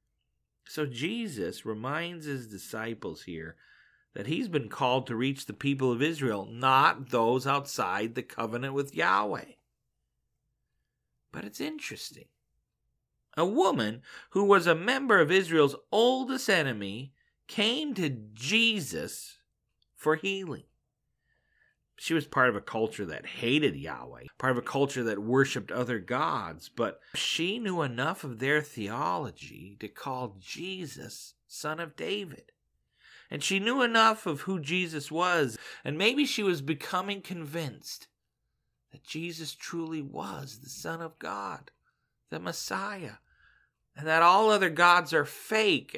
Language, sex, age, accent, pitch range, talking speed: English, male, 40-59, American, 130-185 Hz, 135 wpm